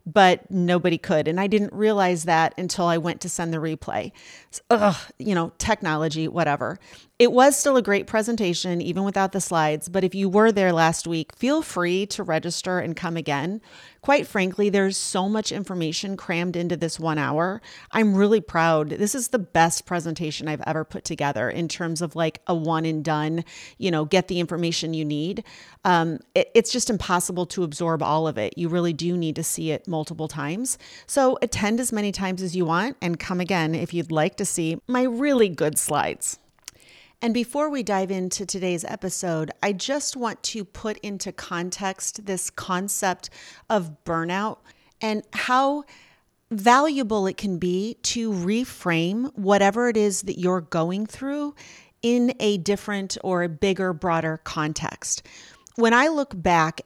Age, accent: 40-59, American